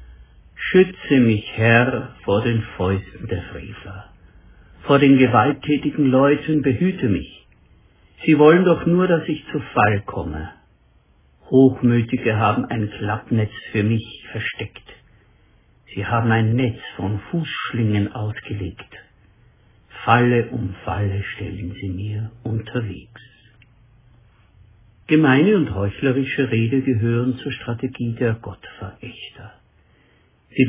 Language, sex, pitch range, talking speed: German, male, 105-135 Hz, 105 wpm